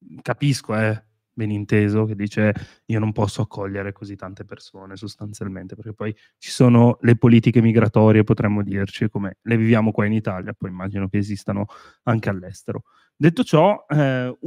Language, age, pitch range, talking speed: Italian, 20-39, 110-125 Hz, 160 wpm